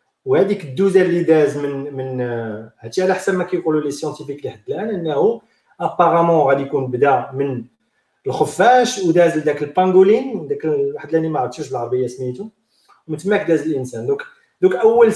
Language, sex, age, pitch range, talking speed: Arabic, male, 40-59, 140-200 Hz, 150 wpm